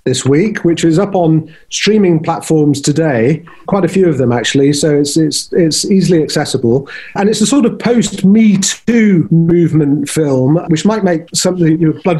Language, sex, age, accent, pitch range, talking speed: English, male, 40-59, British, 145-180 Hz, 180 wpm